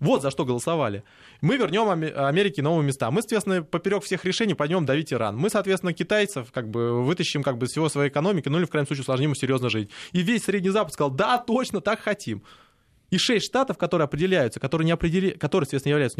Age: 20-39